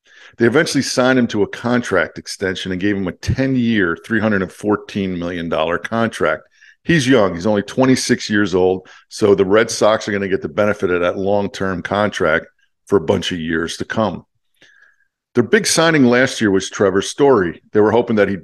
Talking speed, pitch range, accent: 185 wpm, 100-125 Hz, American